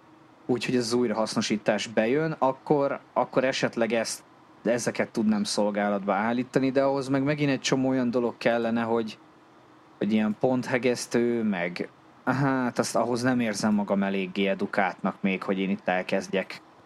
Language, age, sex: Hungarian, 30-49, male